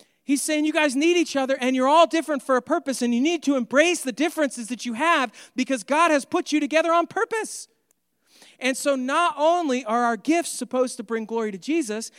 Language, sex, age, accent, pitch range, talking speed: English, male, 40-59, American, 230-310 Hz, 220 wpm